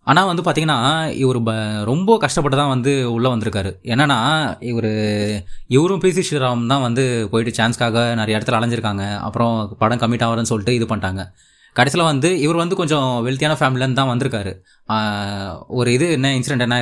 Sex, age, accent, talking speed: male, 20-39, native, 155 wpm